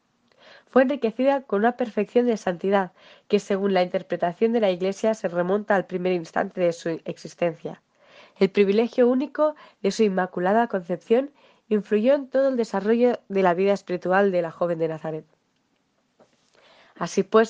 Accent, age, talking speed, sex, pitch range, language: Spanish, 20-39, 155 wpm, female, 180-230 Hz, Spanish